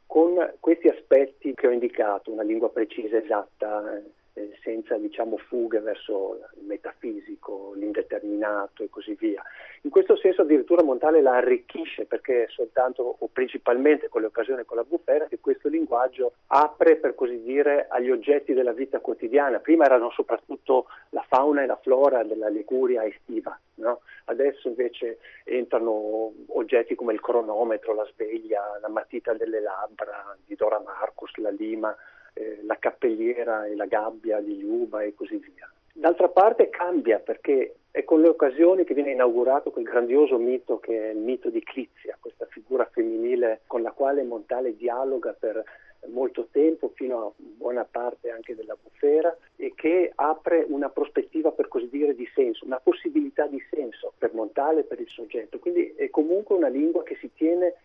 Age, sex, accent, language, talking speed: 40-59, male, native, Italian, 160 wpm